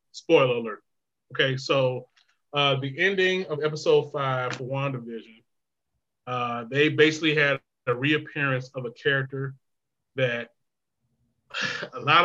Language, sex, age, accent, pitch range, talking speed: English, male, 20-39, American, 125-150 Hz, 120 wpm